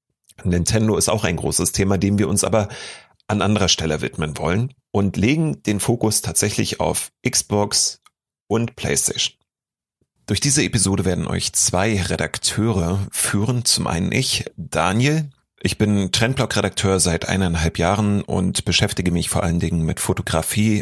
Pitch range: 95-115 Hz